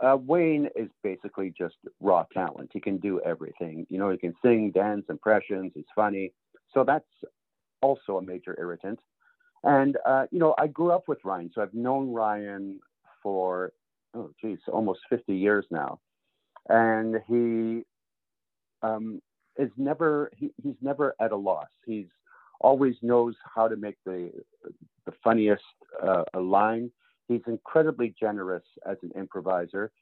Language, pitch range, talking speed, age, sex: English, 100-135 Hz, 150 wpm, 50-69, male